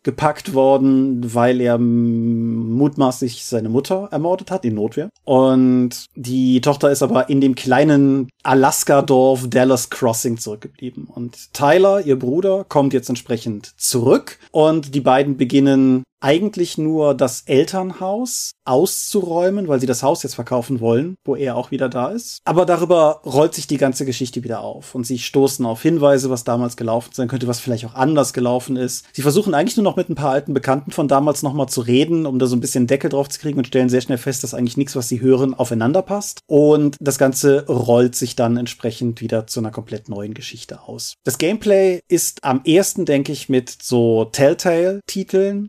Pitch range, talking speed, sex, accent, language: 125-150 Hz, 185 wpm, male, German, German